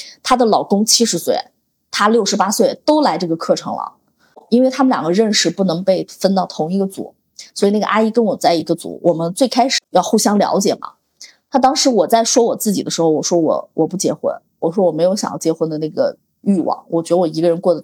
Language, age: Chinese, 20-39